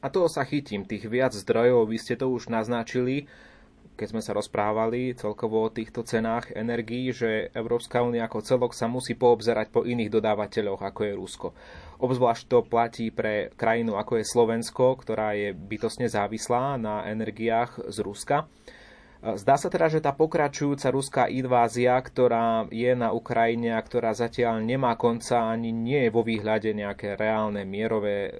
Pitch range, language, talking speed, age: 110-125 Hz, Slovak, 160 wpm, 20-39